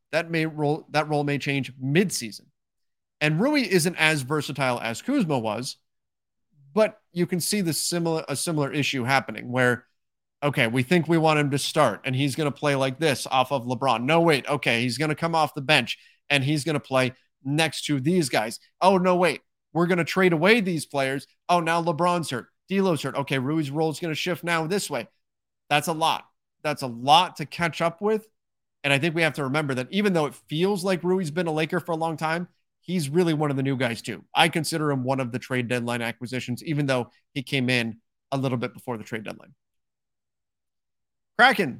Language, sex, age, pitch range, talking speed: English, male, 30-49, 130-170 Hz, 215 wpm